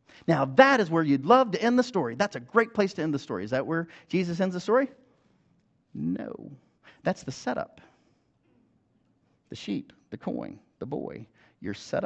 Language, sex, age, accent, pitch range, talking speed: English, male, 40-59, American, 130-205 Hz, 185 wpm